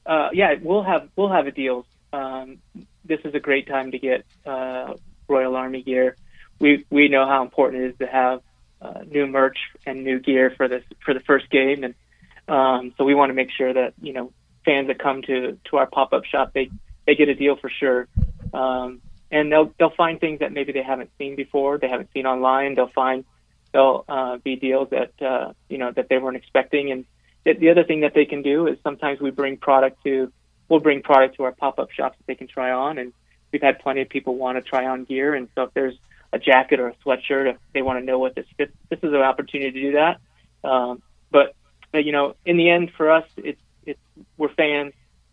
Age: 30-49